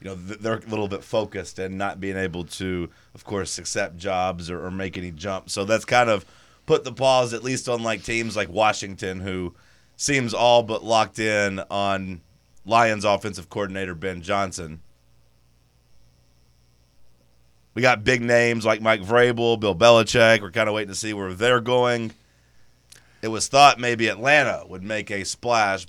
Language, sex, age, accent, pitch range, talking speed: English, male, 30-49, American, 90-110 Hz, 170 wpm